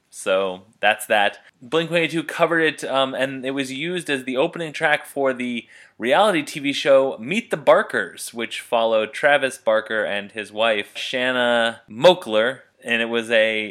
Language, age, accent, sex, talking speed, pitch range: English, 20-39, American, male, 160 wpm, 110-145 Hz